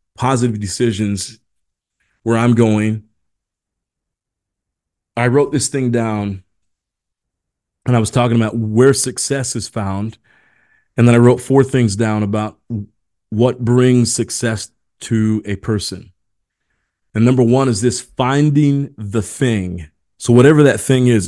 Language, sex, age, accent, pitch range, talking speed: English, male, 30-49, American, 105-125 Hz, 130 wpm